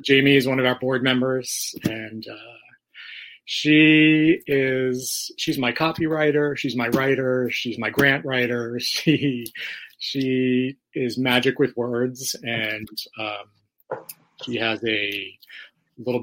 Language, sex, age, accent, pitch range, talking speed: English, male, 30-49, American, 120-145 Hz, 120 wpm